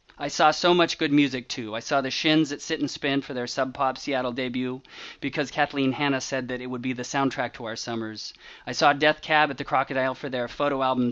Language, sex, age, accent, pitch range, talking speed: English, male, 40-59, American, 130-160 Hz, 245 wpm